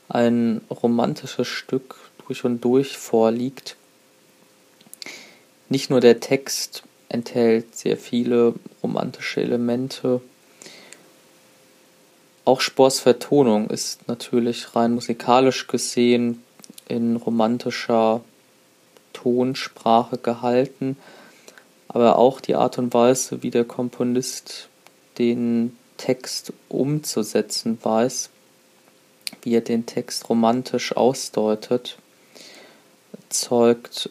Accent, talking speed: German, 85 wpm